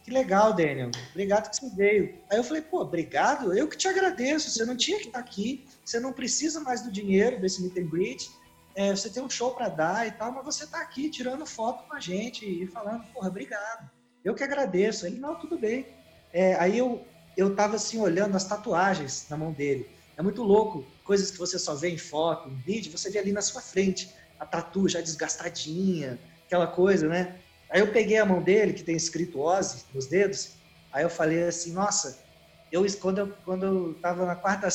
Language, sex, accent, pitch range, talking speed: Portuguese, male, Brazilian, 170-220 Hz, 210 wpm